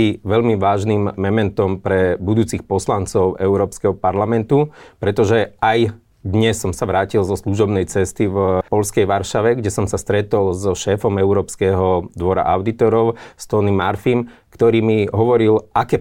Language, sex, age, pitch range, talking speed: Slovak, male, 30-49, 100-110 Hz, 130 wpm